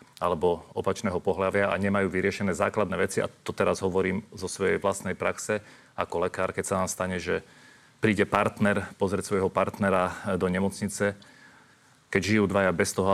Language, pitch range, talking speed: Slovak, 95-105 Hz, 160 wpm